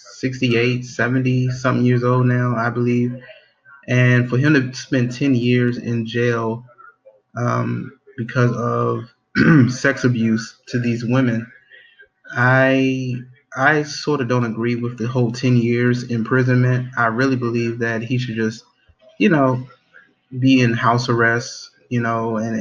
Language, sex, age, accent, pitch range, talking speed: English, male, 20-39, American, 115-125 Hz, 140 wpm